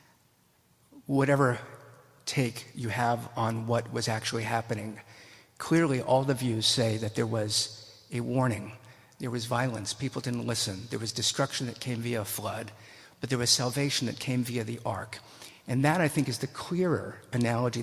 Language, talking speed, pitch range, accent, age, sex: English, 170 wpm, 115-135 Hz, American, 50-69, male